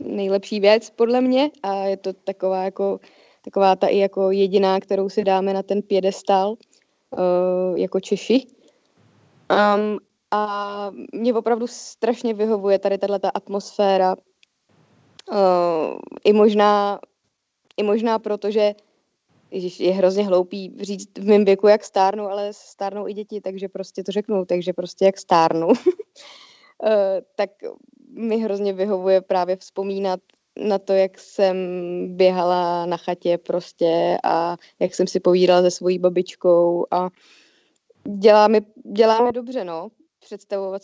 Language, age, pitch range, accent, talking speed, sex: Czech, 20-39, 190-220 Hz, native, 130 wpm, female